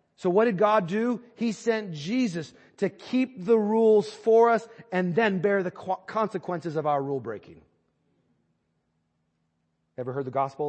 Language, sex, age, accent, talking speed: English, male, 40-59, American, 145 wpm